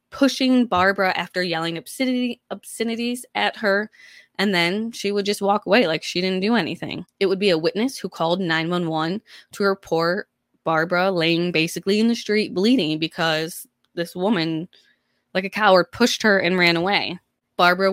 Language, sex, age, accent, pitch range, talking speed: English, female, 20-39, American, 165-210 Hz, 160 wpm